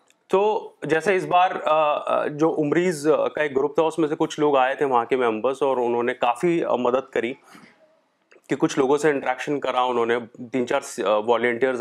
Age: 30-49